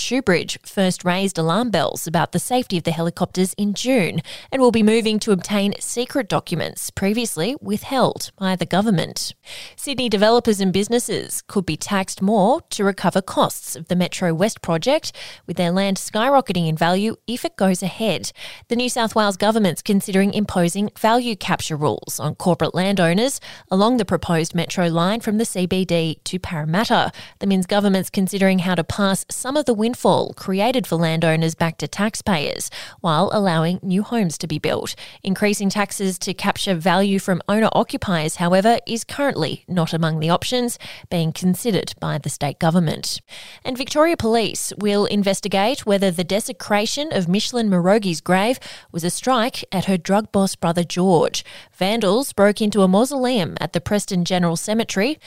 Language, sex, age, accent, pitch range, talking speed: English, female, 20-39, Australian, 175-220 Hz, 165 wpm